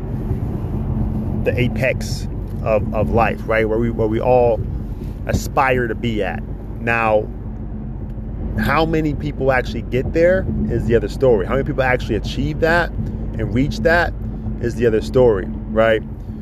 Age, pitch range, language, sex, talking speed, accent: 30-49, 110-125 Hz, English, male, 145 wpm, American